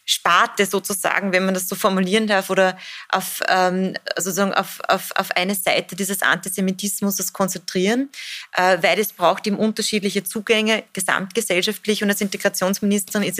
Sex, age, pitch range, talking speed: female, 30-49, 180-210 Hz, 145 wpm